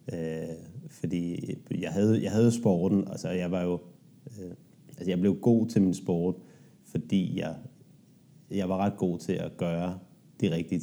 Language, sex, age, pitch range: Danish, male, 30-49, 90-110 Hz